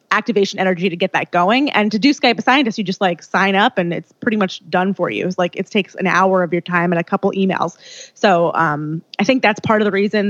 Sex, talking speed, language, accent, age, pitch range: female, 270 wpm, English, American, 20-39, 180-220 Hz